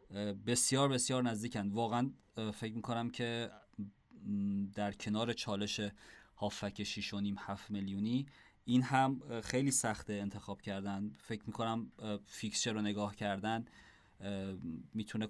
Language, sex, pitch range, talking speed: Persian, male, 105-130 Hz, 110 wpm